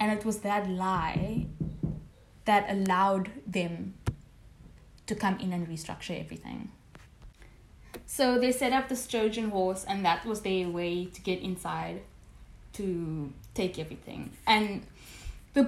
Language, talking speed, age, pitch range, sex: English, 130 wpm, 10-29, 195-240 Hz, female